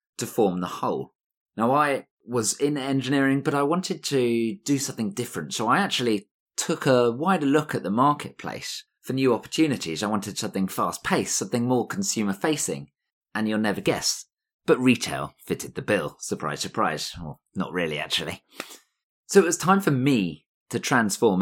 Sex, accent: male, British